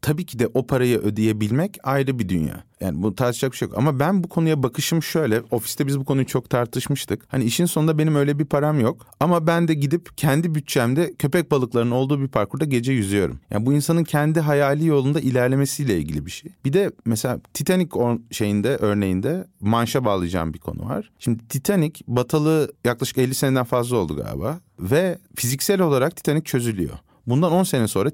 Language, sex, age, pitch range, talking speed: Turkish, male, 40-59, 110-150 Hz, 185 wpm